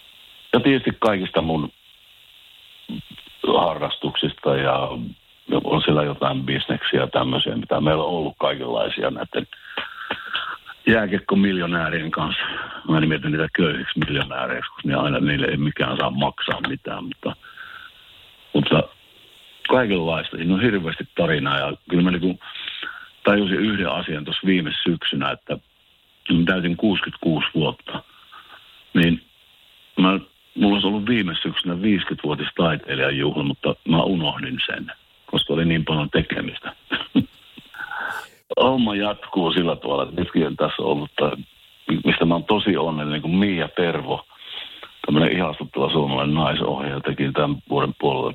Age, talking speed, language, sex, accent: 60-79, 120 wpm, Finnish, male, native